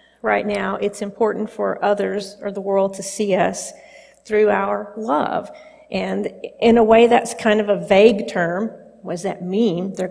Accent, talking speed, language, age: American, 180 wpm, English, 40-59